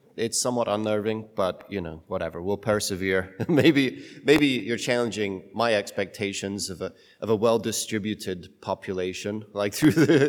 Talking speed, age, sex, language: 145 wpm, 30-49, male, English